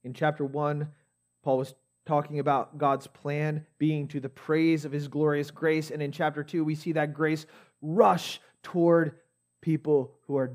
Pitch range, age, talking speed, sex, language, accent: 105-175 Hz, 30-49, 170 wpm, male, English, American